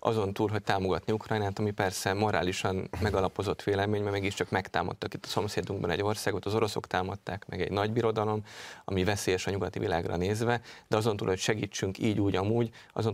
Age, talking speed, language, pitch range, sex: 30-49, 185 wpm, Hungarian, 95-110 Hz, male